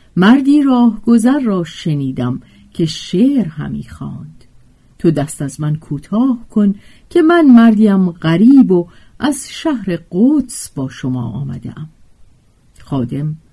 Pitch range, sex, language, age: 140-230 Hz, female, Persian, 50-69